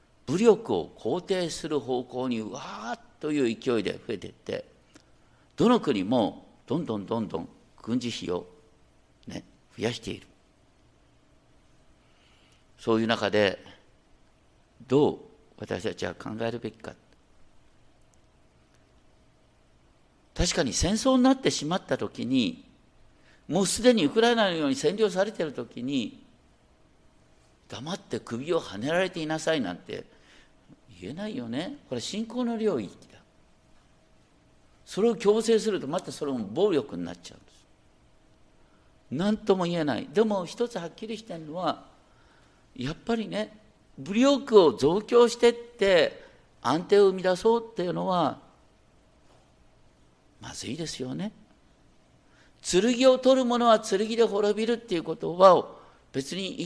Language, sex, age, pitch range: Japanese, male, 50-69, 150-235 Hz